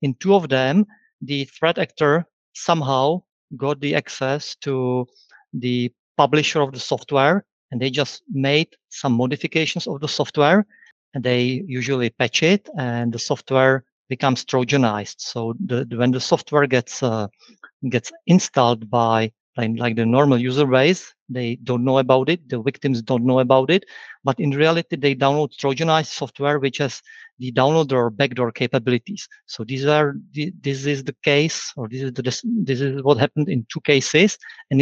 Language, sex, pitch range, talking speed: English, male, 130-165 Hz, 165 wpm